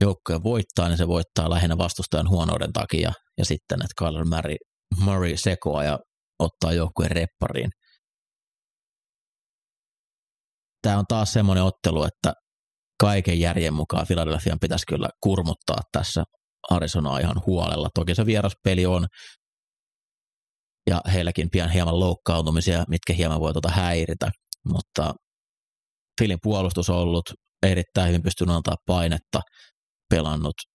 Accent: native